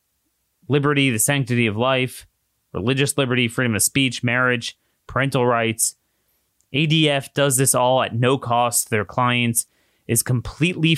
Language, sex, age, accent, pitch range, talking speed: English, male, 30-49, American, 115-135 Hz, 135 wpm